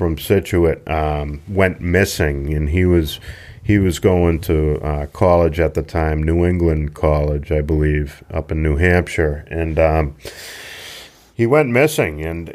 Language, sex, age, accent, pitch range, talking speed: English, male, 40-59, American, 80-100 Hz, 155 wpm